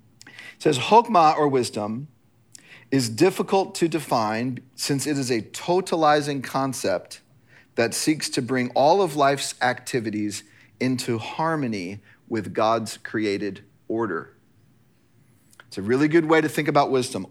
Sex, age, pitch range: male, 40-59, 115-145 Hz